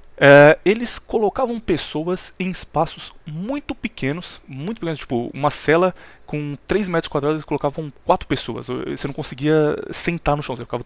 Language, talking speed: Portuguese, 160 wpm